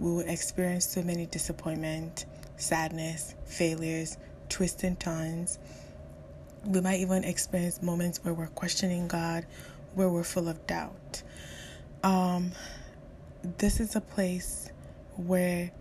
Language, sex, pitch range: English, female, 165-185 Hz